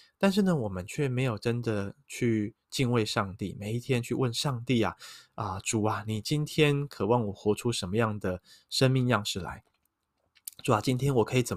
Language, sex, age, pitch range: Chinese, male, 20-39, 105-145 Hz